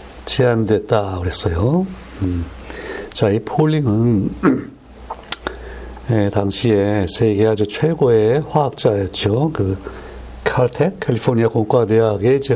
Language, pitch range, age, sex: Korean, 100-130 Hz, 60-79, male